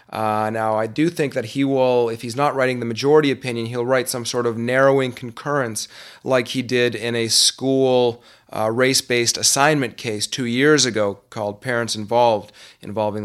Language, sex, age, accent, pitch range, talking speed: English, male, 30-49, American, 110-135 Hz, 175 wpm